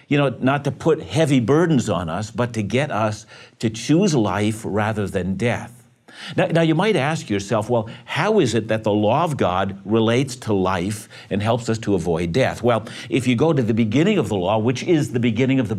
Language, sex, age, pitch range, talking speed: English, male, 60-79, 110-150 Hz, 225 wpm